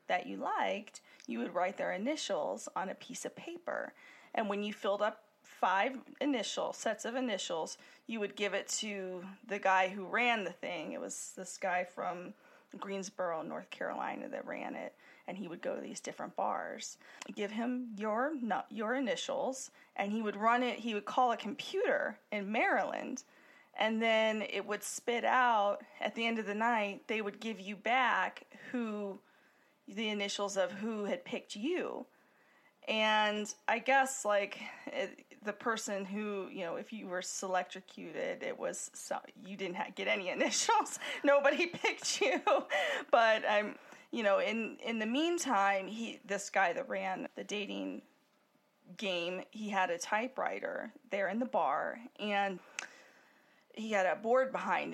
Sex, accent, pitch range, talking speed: female, American, 195-245 Hz, 165 wpm